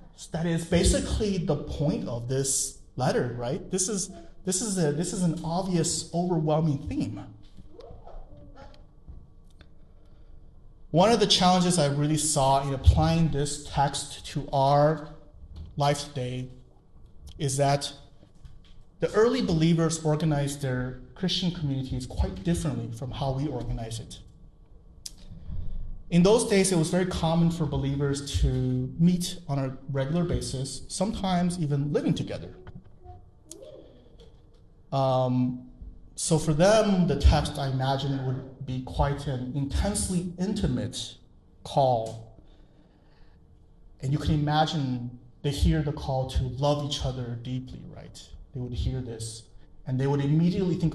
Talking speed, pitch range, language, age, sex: 130 wpm, 125-160 Hz, English, 30-49, male